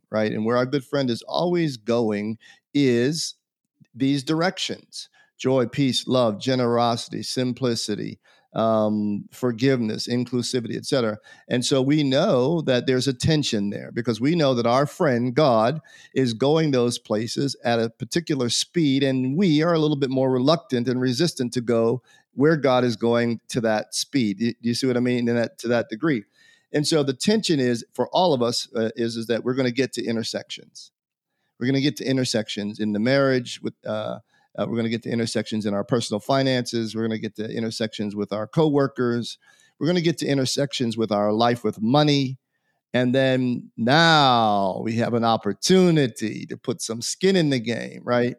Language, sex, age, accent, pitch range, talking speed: English, male, 50-69, American, 115-140 Hz, 190 wpm